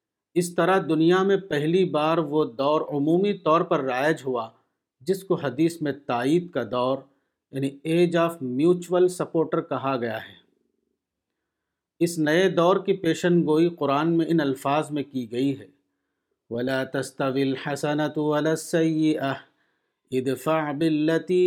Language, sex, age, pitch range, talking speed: Urdu, male, 50-69, 135-165 Hz, 135 wpm